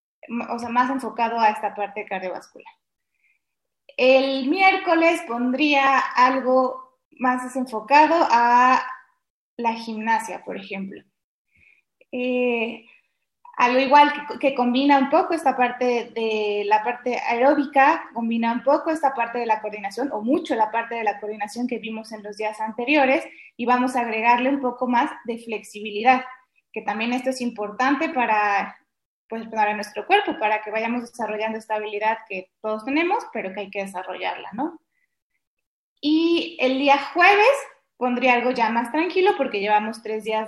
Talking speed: 150 wpm